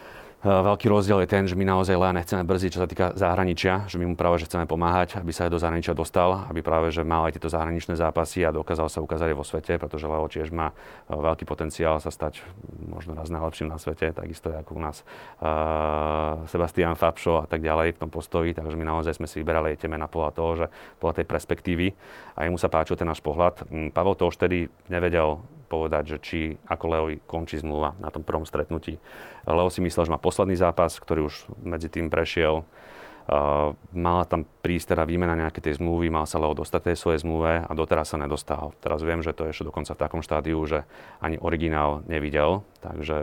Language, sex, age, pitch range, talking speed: Slovak, male, 30-49, 80-85 Hz, 210 wpm